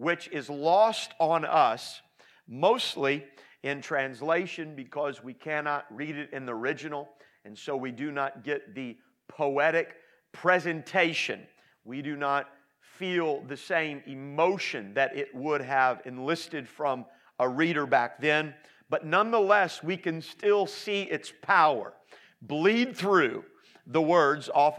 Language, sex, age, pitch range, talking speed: English, male, 50-69, 145-200 Hz, 135 wpm